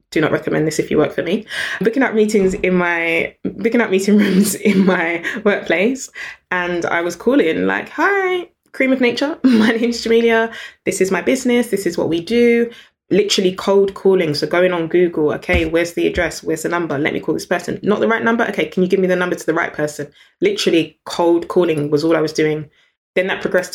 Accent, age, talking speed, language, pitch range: British, 20-39, 220 wpm, English, 160-205 Hz